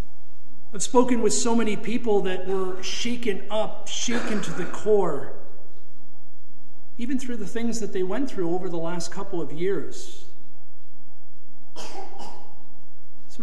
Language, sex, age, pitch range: English, male, 50-69, 185-220 Hz